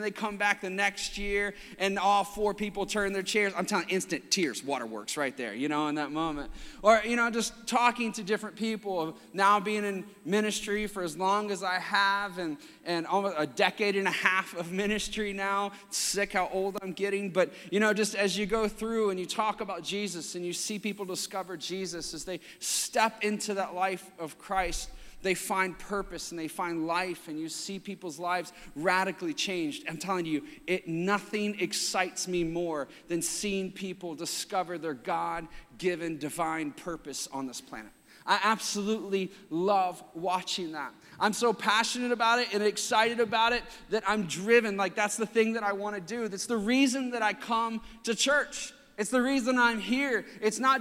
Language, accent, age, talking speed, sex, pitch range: English, American, 30-49, 190 wpm, male, 180-220 Hz